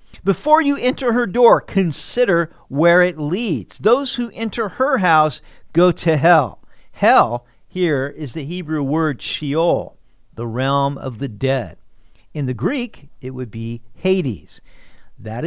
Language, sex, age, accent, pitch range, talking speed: English, male, 50-69, American, 120-180 Hz, 145 wpm